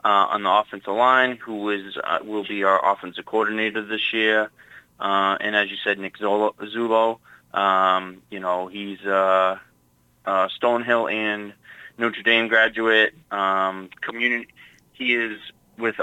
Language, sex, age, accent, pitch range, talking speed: English, male, 20-39, American, 95-110 Hz, 140 wpm